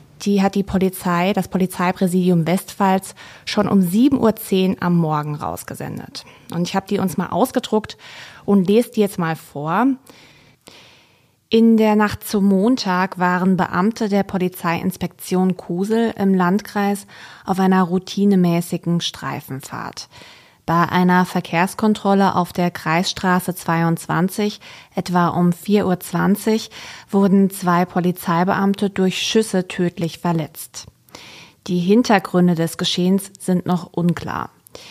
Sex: female